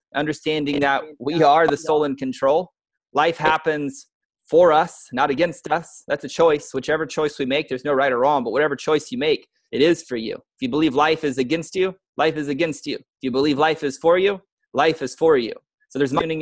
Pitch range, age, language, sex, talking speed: 135-175 Hz, 30-49, English, male, 225 wpm